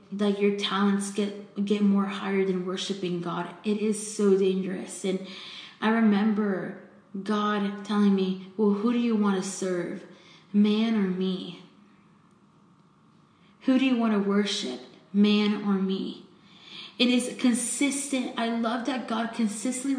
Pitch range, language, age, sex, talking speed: 200-245 Hz, English, 20-39, female, 145 wpm